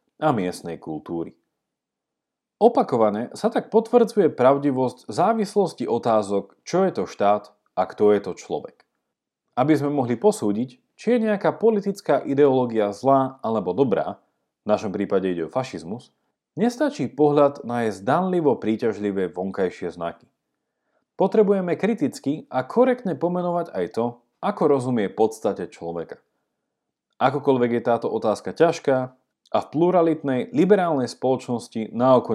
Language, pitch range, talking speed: Slovak, 115-180 Hz, 125 wpm